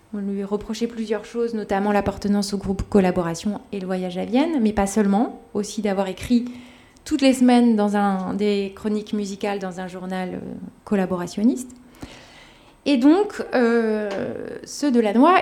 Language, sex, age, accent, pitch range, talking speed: French, female, 20-39, French, 205-265 Hz, 150 wpm